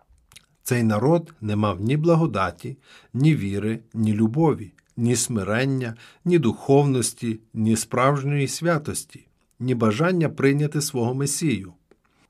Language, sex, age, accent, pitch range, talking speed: Ukrainian, male, 50-69, native, 110-145 Hz, 105 wpm